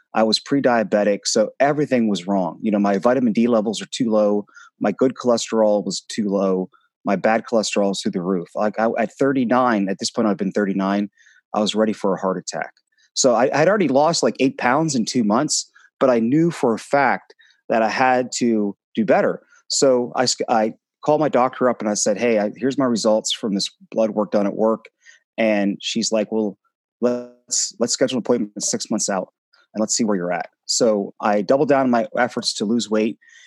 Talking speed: 215 wpm